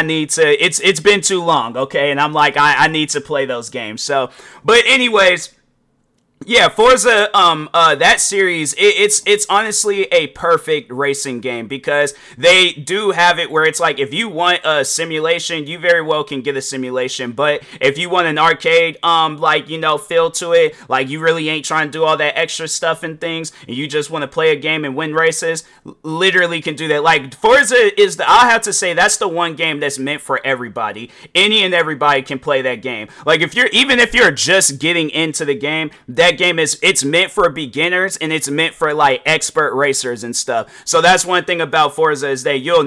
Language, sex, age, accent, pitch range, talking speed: English, male, 30-49, American, 145-180 Hz, 215 wpm